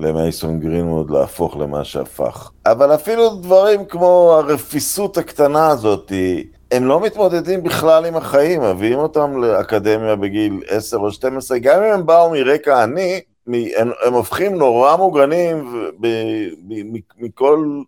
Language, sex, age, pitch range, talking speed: Hebrew, male, 50-69, 90-150 Hz, 130 wpm